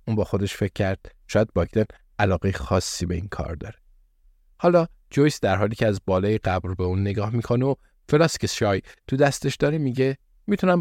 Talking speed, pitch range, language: 185 wpm, 95-125 Hz, Persian